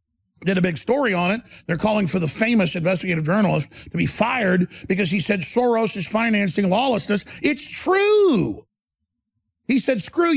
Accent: American